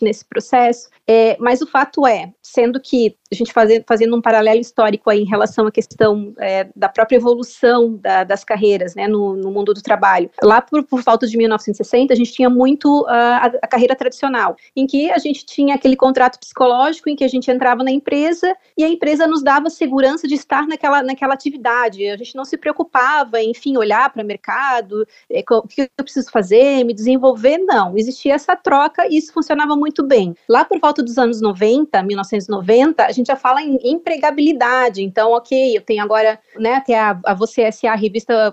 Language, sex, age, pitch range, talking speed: Portuguese, female, 30-49, 225-275 Hz, 190 wpm